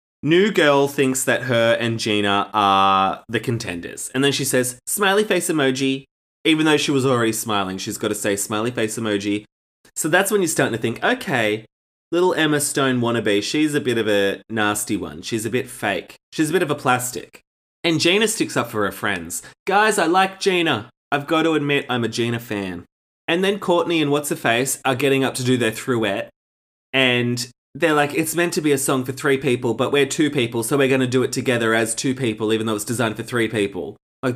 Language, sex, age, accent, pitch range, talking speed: English, male, 20-39, Australian, 110-150 Hz, 220 wpm